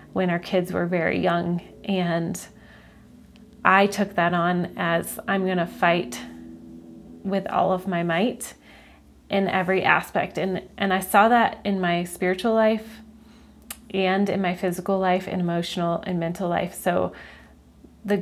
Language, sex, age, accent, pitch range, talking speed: English, female, 30-49, American, 175-200 Hz, 145 wpm